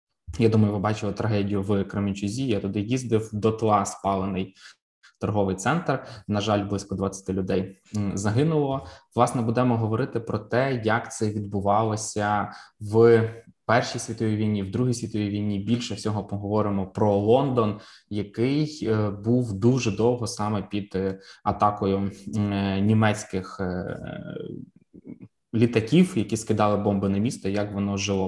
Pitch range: 100-115 Hz